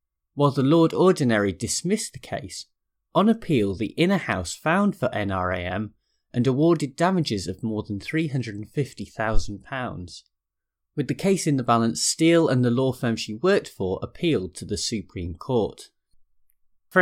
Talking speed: 150 wpm